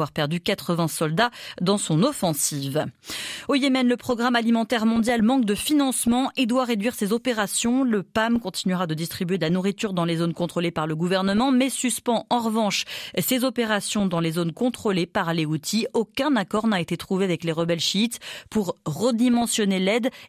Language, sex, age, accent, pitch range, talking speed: French, female, 30-49, French, 170-235 Hz, 175 wpm